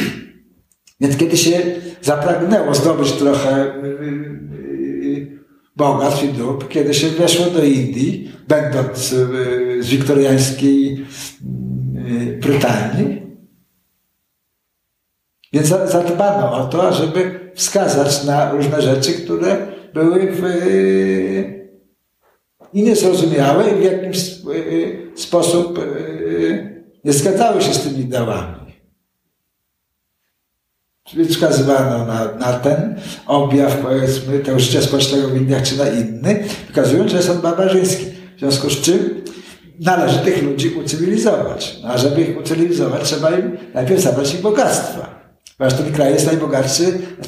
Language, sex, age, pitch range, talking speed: Polish, male, 60-79, 130-175 Hz, 120 wpm